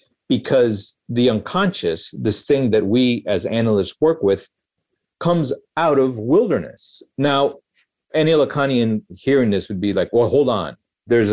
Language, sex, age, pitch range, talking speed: English, male, 50-69, 100-135 Hz, 145 wpm